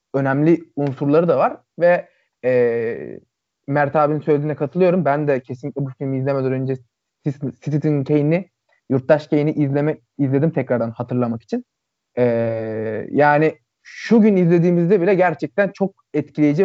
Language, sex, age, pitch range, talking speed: Turkish, male, 30-49, 125-160 Hz, 125 wpm